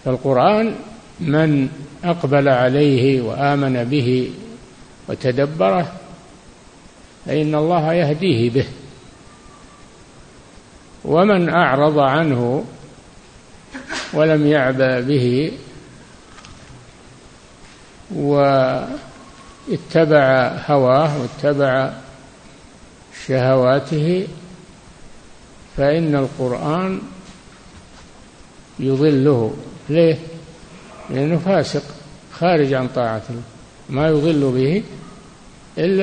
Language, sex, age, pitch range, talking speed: Arabic, male, 60-79, 130-165 Hz, 60 wpm